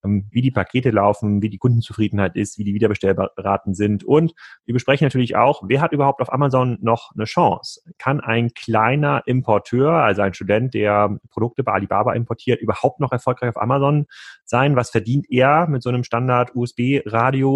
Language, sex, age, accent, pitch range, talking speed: German, male, 30-49, German, 115-135 Hz, 170 wpm